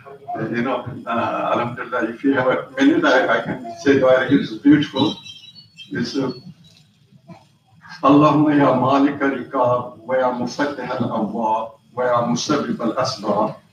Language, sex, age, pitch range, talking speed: English, male, 70-89, 125-155 Hz, 130 wpm